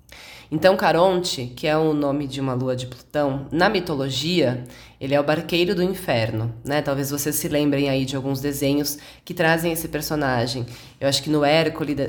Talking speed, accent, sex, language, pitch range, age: 185 wpm, Brazilian, female, Portuguese, 135-170 Hz, 20-39